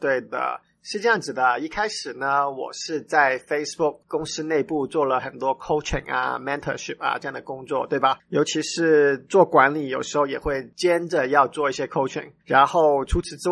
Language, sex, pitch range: Chinese, male, 140-195 Hz